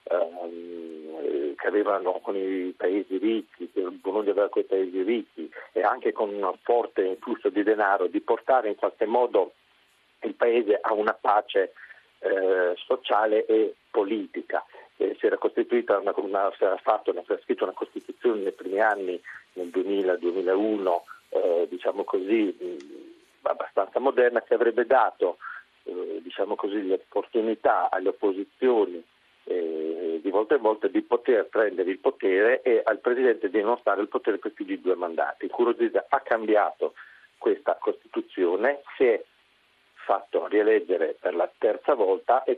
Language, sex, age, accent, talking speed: Italian, male, 40-59, native, 140 wpm